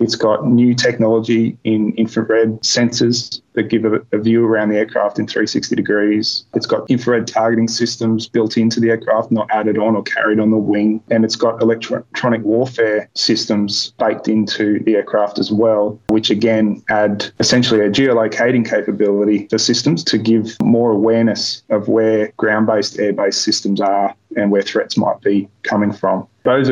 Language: English